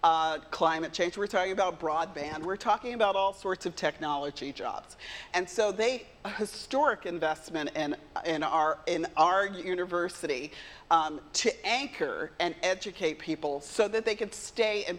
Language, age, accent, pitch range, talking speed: English, 40-59, American, 165-215 Hz, 155 wpm